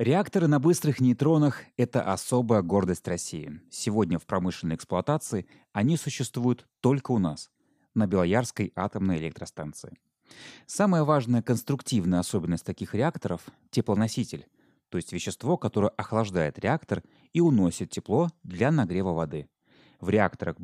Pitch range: 90-130 Hz